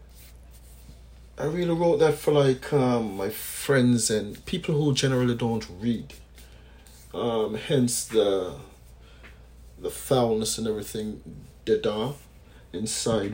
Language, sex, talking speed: English, male, 110 wpm